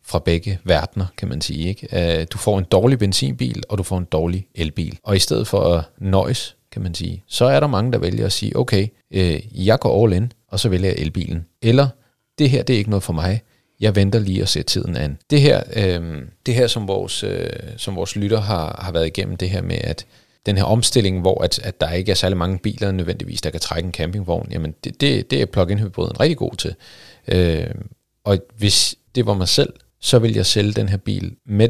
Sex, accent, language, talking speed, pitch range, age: male, native, Danish, 235 wpm, 90-115 Hz, 40-59